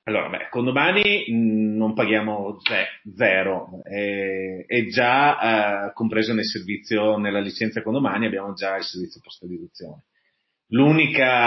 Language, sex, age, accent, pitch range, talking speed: Italian, male, 30-49, native, 110-160 Hz, 125 wpm